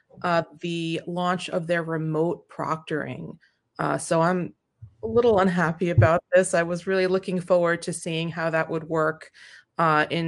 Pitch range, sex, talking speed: 155-180 Hz, female, 165 wpm